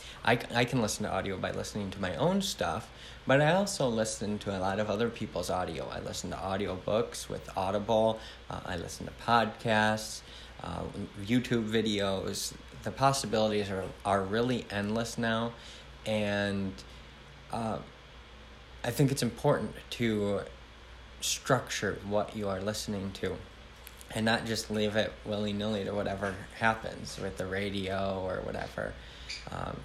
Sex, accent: male, American